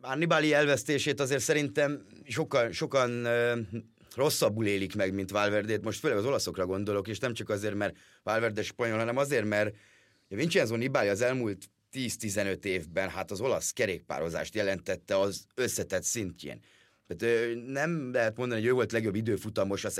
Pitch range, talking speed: 100-120 Hz, 150 wpm